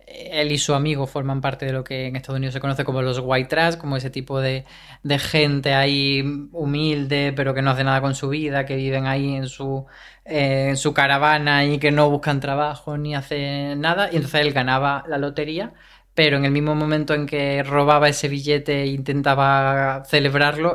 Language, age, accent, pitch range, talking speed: Spanish, 20-39, Spanish, 130-150 Hz, 200 wpm